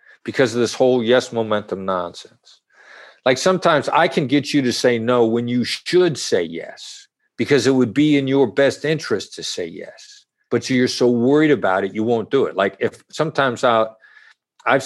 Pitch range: 115-140 Hz